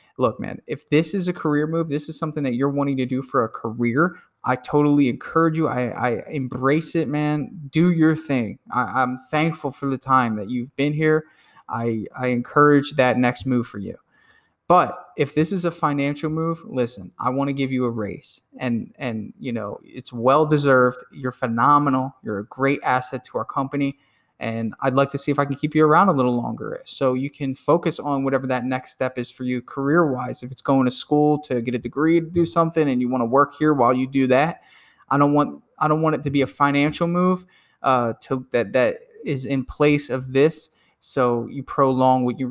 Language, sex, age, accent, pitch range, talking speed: English, male, 20-39, American, 125-150 Hz, 215 wpm